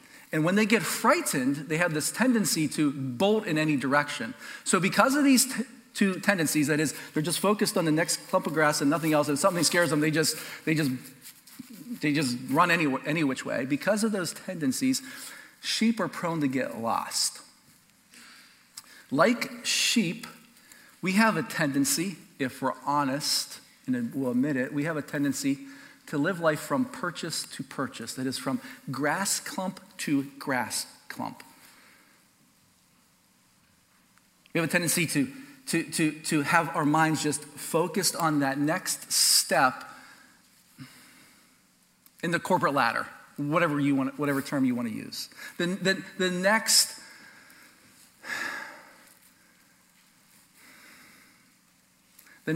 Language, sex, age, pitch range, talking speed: English, male, 40-59, 150-245 Hz, 145 wpm